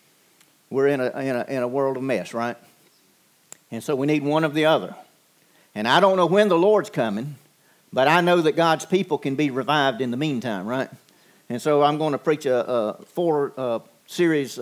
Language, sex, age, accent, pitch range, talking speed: English, male, 50-69, American, 155-200 Hz, 210 wpm